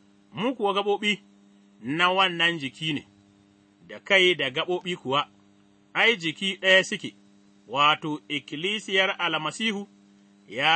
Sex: male